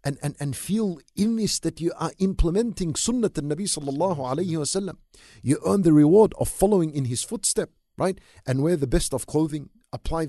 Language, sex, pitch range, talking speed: English, male, 140-185 Hz, 195 wpm